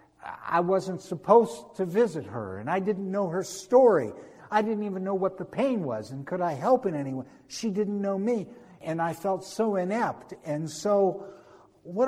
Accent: American